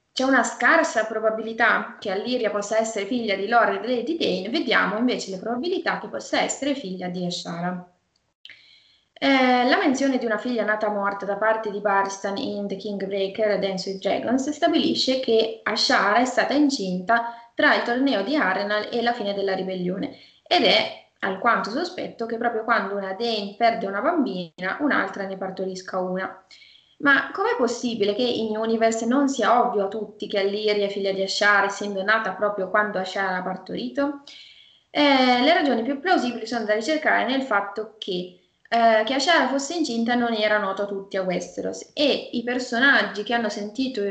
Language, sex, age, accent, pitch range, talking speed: Italian, female, 20-39, native, 200-250 Hz, 175 wpm